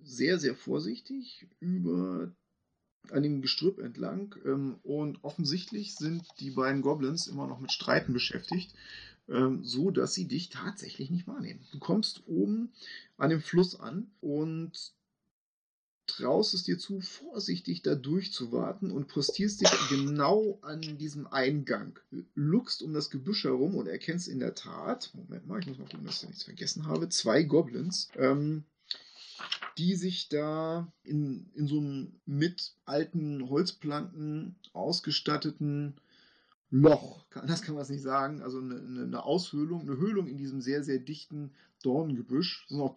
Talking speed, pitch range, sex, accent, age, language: 150 wpm, 135-180 Hz, male, German, 30-49, German